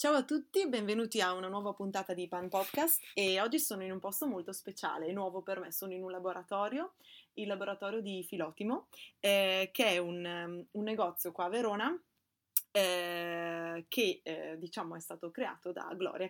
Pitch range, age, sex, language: 180-235 Hz, 20-39, female, Italian